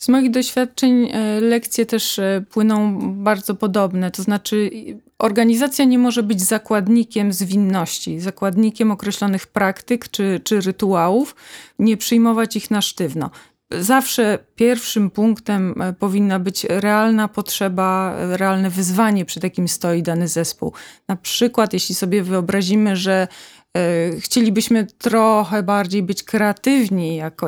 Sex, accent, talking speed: female, native, 115 wpm